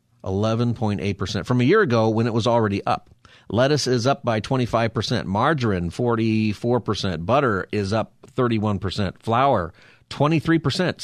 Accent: American